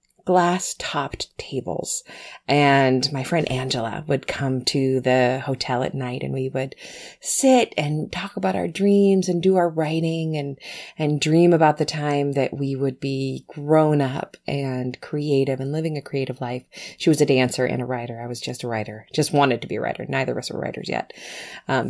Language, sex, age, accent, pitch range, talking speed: English, female, 30-49, American, 130-165 Hz, 195 wpm